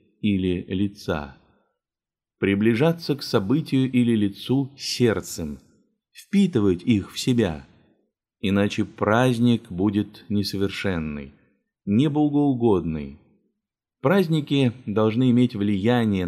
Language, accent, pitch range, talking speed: Russian, native, 90-120 Hz, 75 wpm